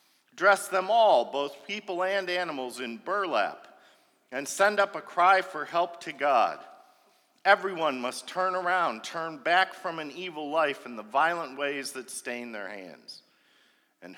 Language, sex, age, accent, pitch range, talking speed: English, male, 50-69, American, 110-160 Hz, 155 wpm